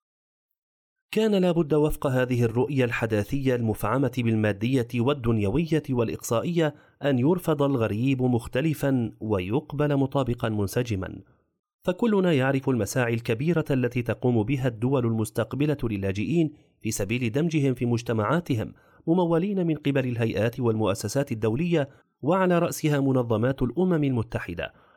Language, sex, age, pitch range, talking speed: Arabic, male, 30-49, 115-155 Hz, 105 wpm